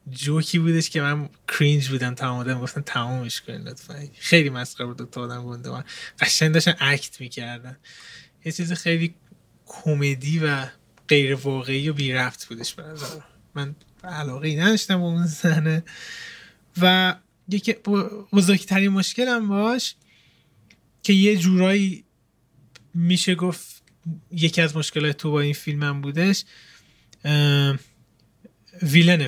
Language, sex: Persian, male